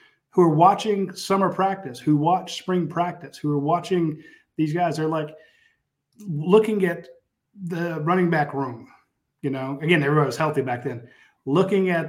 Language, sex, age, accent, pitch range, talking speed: English, male, 30-49, American, 145-180 Hz, 160 wpm